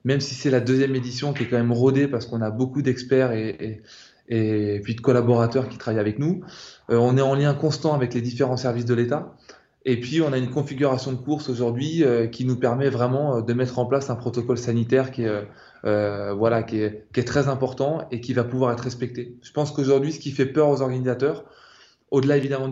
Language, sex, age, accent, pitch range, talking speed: French, male, 20-39, French, 115-135 Hz, 225 wpm